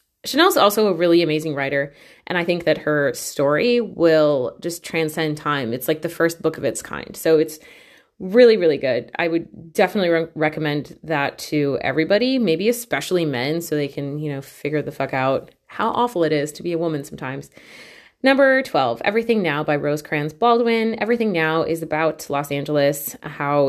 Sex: female